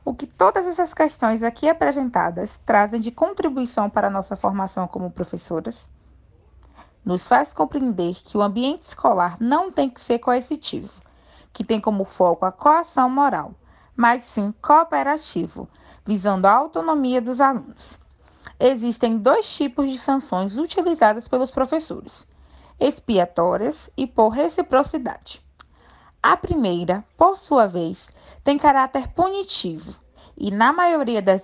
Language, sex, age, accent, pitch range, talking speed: Portuguese, female, 20-39, Brazilian, 195-300 Hz, 130 wpm